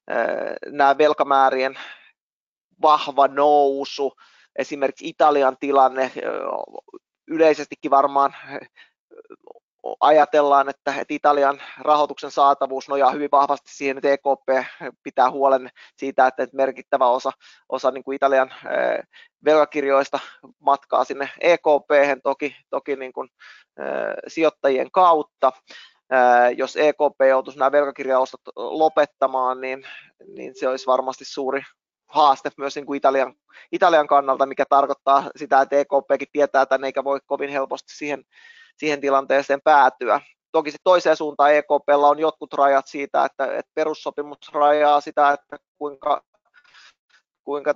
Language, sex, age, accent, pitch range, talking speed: Finnish, male, 20-39, native, 135-150 Hz, 115 wpm